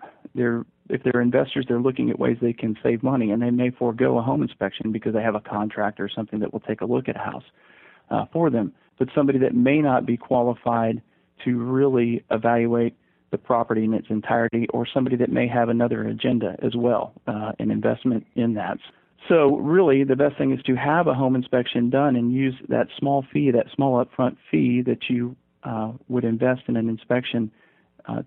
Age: 40-59